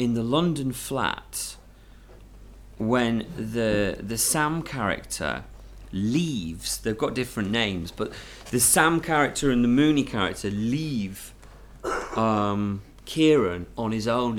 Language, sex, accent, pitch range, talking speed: English, male, British, 100-125 Hz, 115 wpm